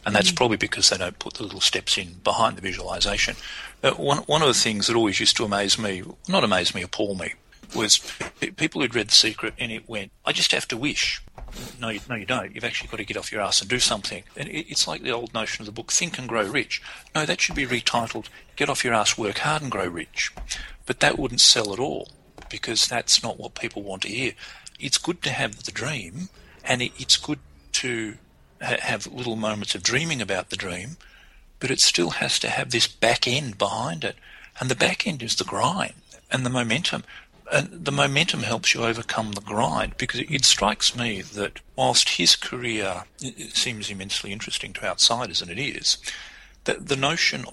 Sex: male